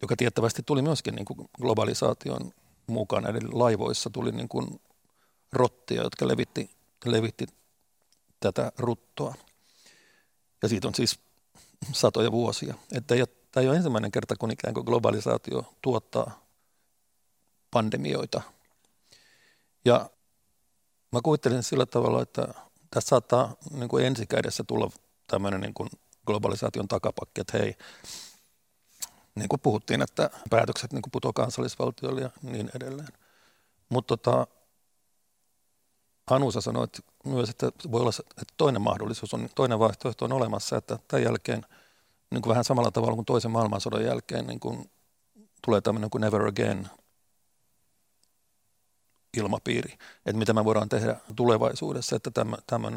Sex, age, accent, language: male, 50-69, native, Finnish